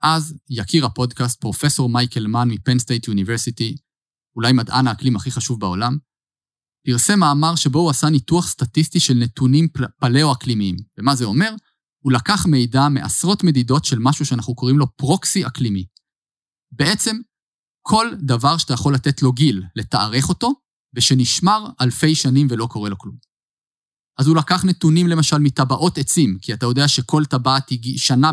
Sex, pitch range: male, 125-155 Hz